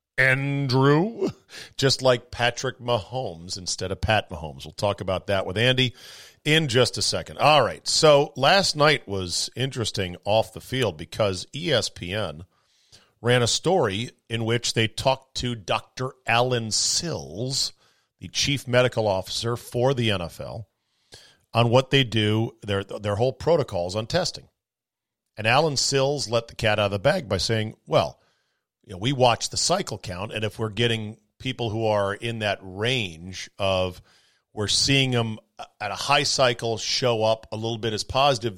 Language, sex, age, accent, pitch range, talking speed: English, male, 40-59, American, 105-130 Hz, 160 wpm